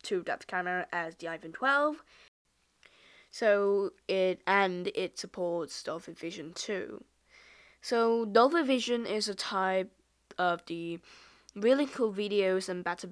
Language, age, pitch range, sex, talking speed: English, 10-29, 180-235 Hz, female, 130 wpm